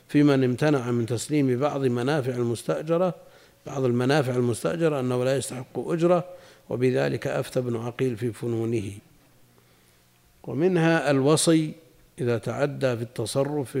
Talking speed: 115 wpm